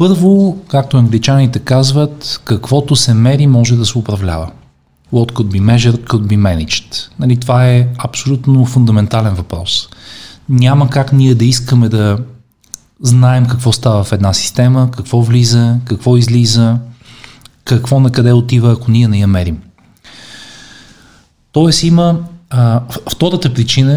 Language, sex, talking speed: Bulgarian, male, 135 wpm